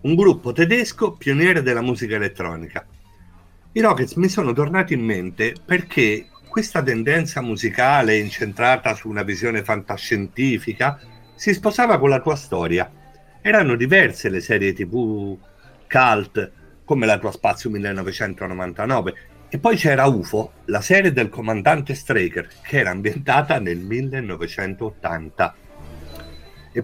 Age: 50-69